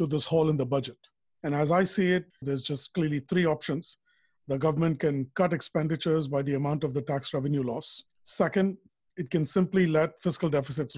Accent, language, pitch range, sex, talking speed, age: Indian, English, 140-175 Hz, male, 190 wpm, 50-69